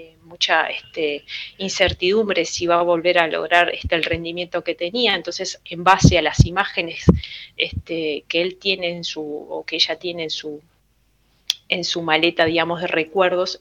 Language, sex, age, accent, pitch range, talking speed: Spanish, female, 20-39, Argentinian, 160-185 Hz, 170 wpm